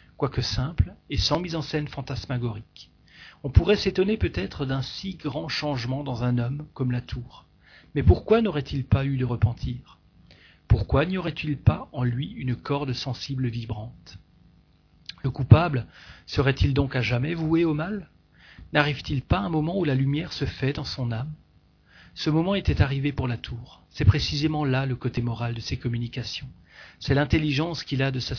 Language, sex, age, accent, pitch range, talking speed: French, male, 40-59, French, 120-145 Hz, 175 wpm